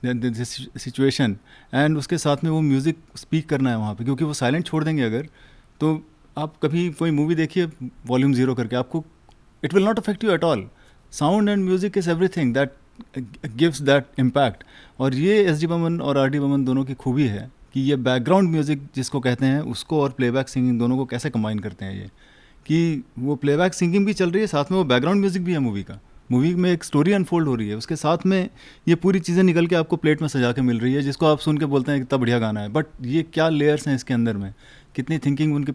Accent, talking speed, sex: native, 230 wpm, male